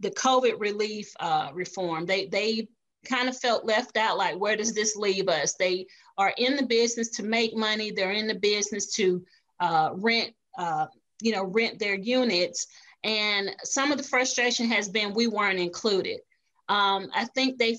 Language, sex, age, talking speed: English, female, 30-49, 180 wpm